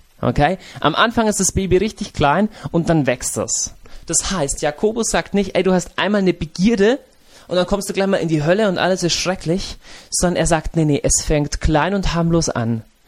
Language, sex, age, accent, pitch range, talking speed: German, male, 30-49, German, 160-195 Hz, 215 wpm